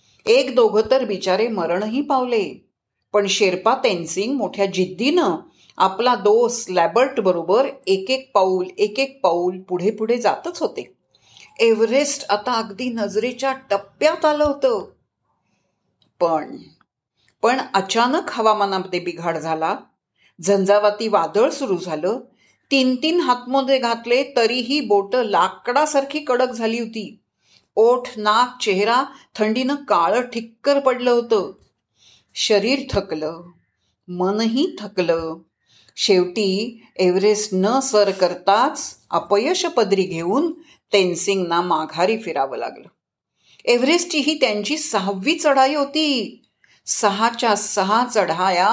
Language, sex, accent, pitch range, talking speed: Marathi, female, native, 185-265 Hz, 105 wpm